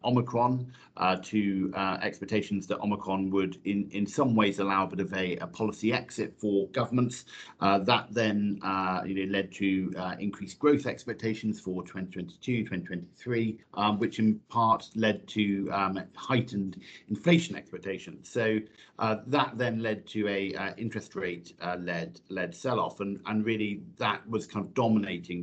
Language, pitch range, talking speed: English, 95-115 Hz, 165 wpm